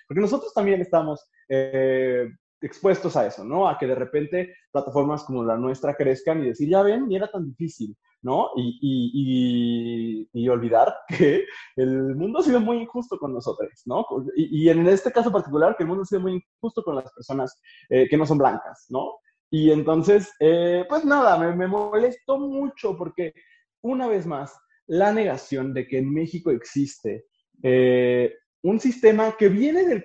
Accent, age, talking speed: Mexican, 20-39, 180 wpm